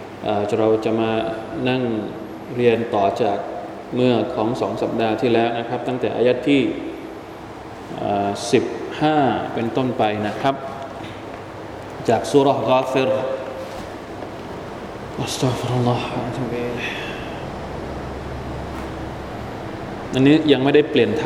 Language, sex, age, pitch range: Thai, male, 20-39, 115-150 Hz